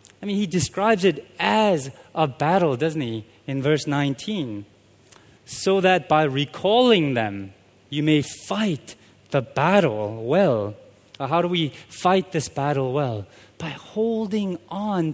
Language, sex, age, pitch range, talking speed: English, male, 20-39, 135-195 Hz, 135 wpm